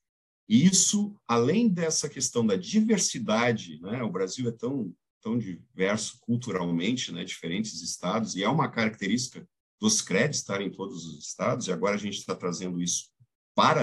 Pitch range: 100-140 Hz